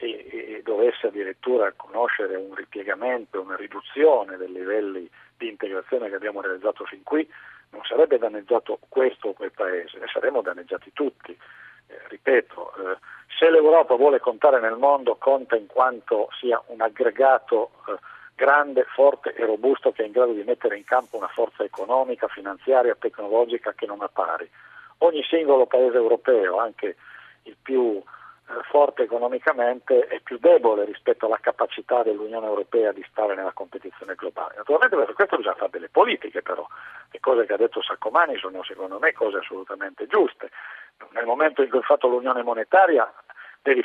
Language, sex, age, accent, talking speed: Italian, male, 50-69, native, 155 wpm